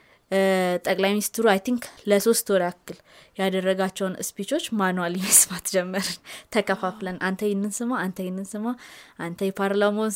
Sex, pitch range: female, 185-230 Hz